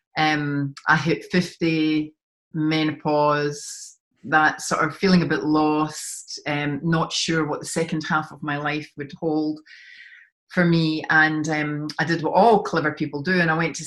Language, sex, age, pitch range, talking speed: English, female, 40-59, 150-165 Hz, 170 wpm